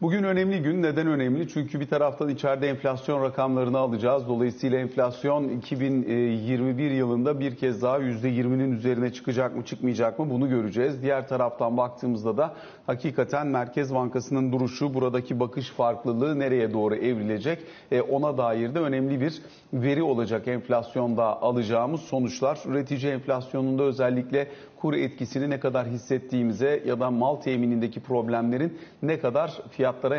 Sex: male